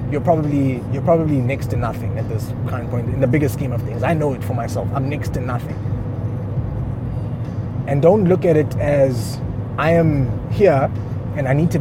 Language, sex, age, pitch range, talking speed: English, male, 20-39, 120-155 Hz, 200 wpm